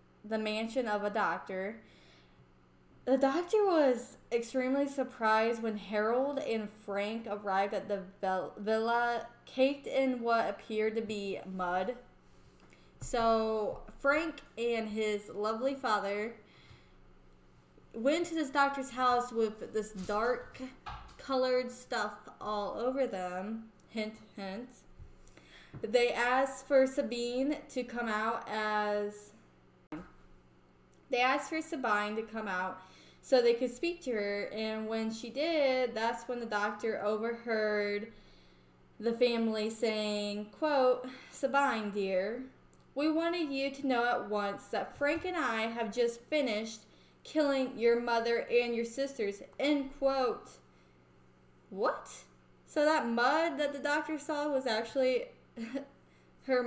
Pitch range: 205-260 Hz